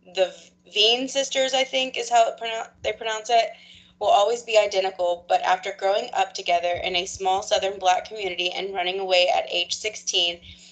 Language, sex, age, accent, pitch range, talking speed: English, female, 20-39, American, 175-205 Hz, 175 wpm